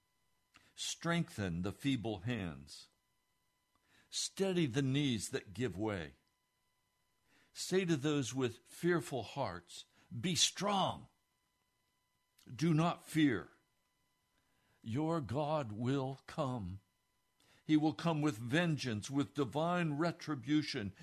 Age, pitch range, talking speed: 60-79, 100-140 Hz, 95 wpm